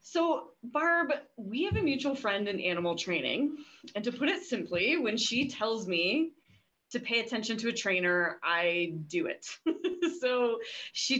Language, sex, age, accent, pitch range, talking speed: English, female, 20-39, American, 175-265 Hz, 160 wpm